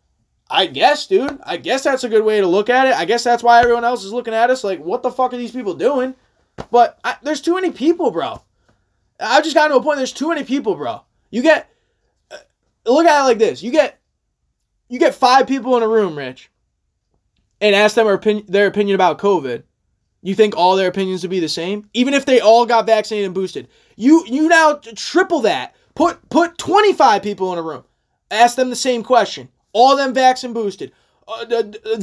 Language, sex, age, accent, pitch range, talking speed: English, male, 20-39, American, 225-310 Hz, 220 wpm